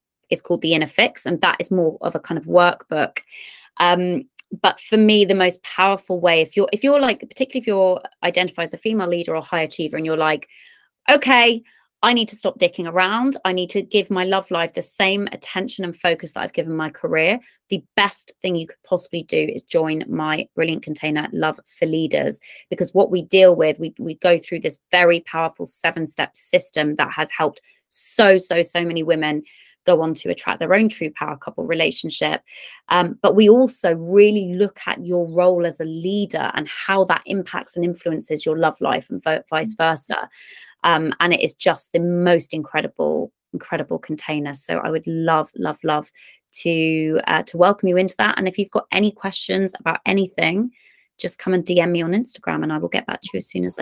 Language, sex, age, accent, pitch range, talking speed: English, female, 20-39, British, 160-195 Hz, 205 wpm